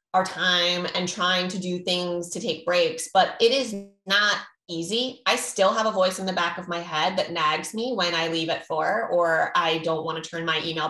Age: 20-39